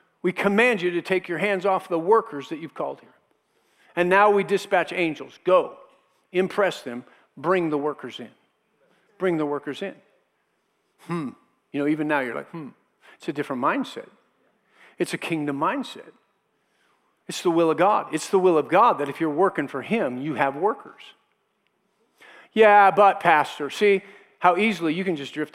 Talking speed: 175 wpm